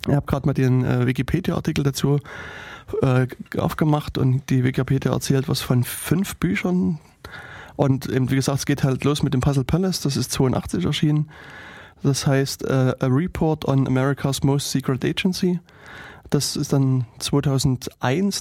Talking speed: 155 wpm